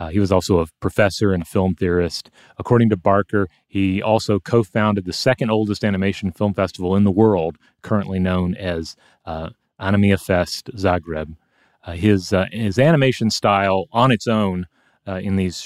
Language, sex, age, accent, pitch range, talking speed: English, male, 30-49, American, 95-110 Hz, 170 wpm